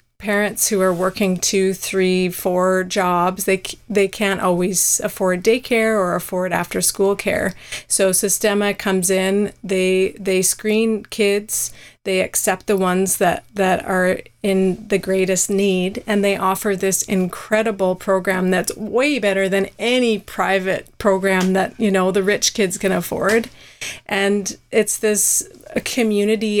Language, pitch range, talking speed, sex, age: English, 185-205 Hz, 140 wpm, female, 30-49